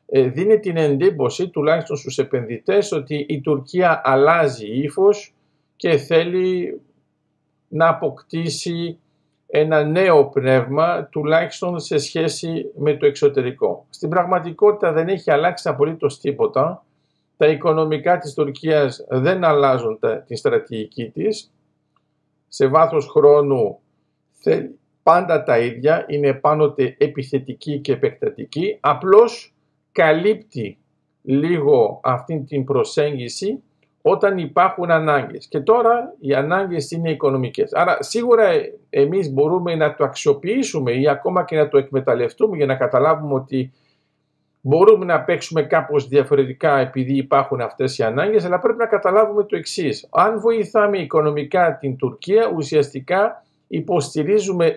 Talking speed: 115 wpm